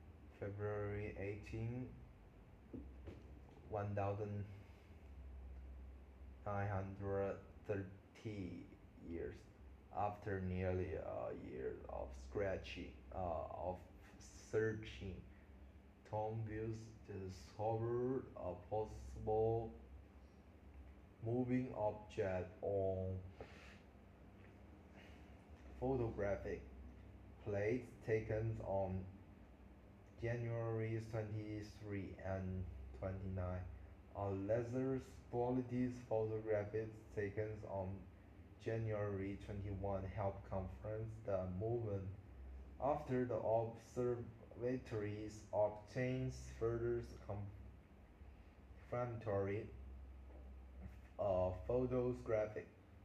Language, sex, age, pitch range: Chinese, male, 20-39, 90-110 Hz